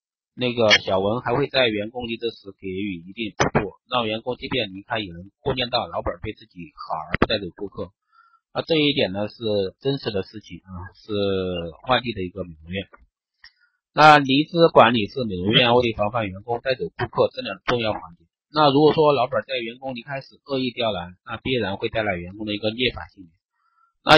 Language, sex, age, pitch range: Chinese, male, 30-49, 100-135 Hz